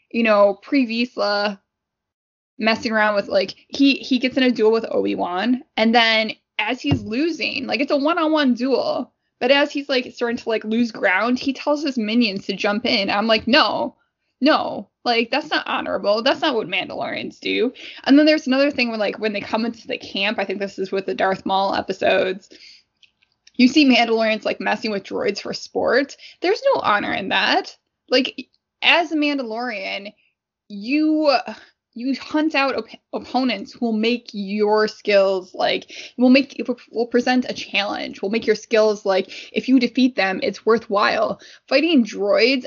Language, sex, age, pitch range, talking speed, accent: English, female, 10-29, 210-275 Hz, 175 wpm, American